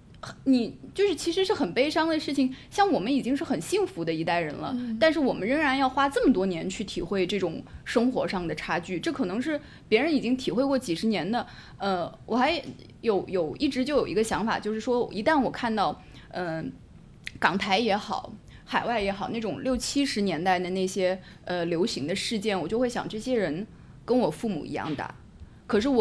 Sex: female